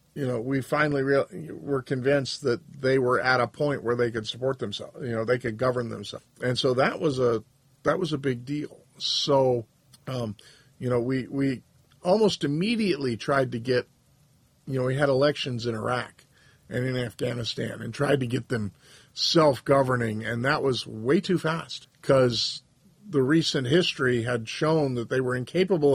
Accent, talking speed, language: American, 175 wpm, English